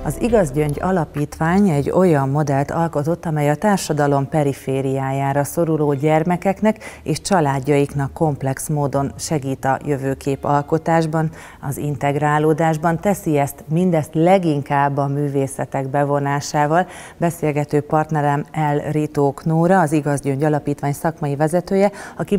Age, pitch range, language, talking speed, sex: 40-59, 140-165 Hz, Hungarian, 110 wpm, female